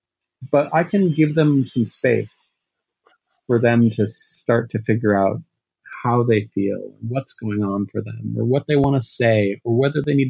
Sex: male